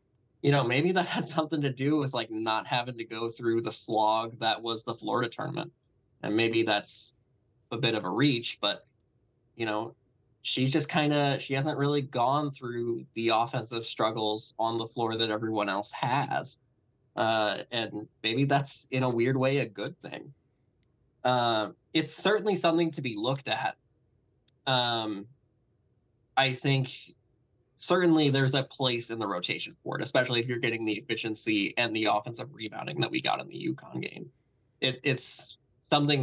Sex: male